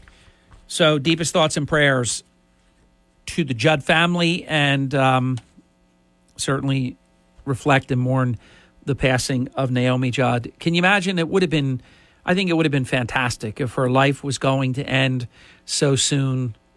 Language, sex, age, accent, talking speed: English, male, 50-69, American, 155 wpm